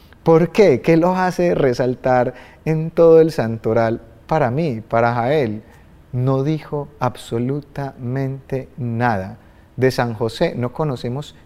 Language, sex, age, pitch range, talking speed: Spanish, male, 30-49, 110-145 Hz, 120 wpm